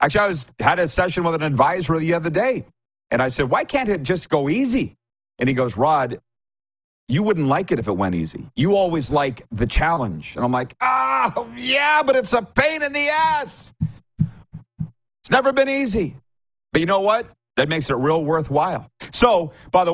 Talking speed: 200 wpm